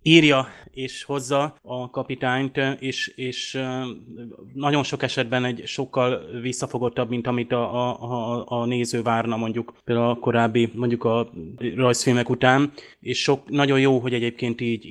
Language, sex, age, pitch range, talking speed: Hungarian, male, 20-39, 115-125 Hz, 145 wpm